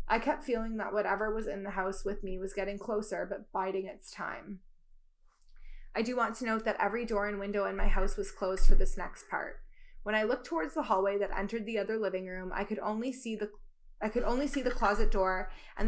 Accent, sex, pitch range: American, female, 195-225 Hz